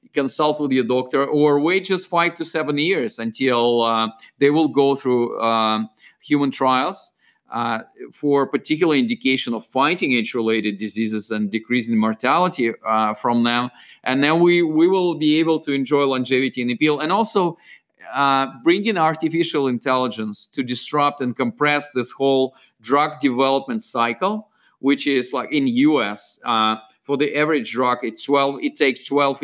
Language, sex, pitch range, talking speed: English, male, 120-155 Hz, 155 wpm